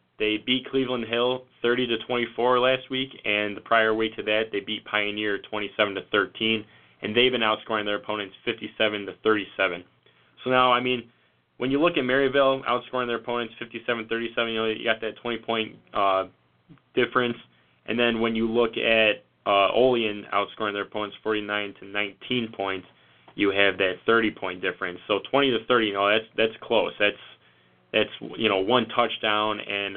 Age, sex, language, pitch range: 20-39, male, English, 100-120 Hz